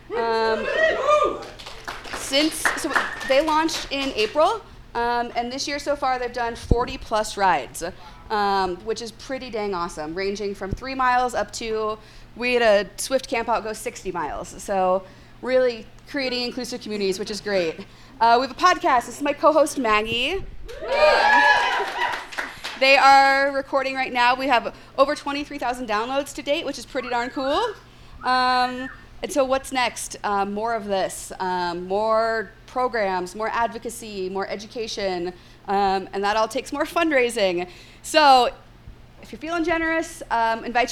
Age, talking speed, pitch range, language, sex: 30-49, 155 wpm, 210-270 Hz, English, female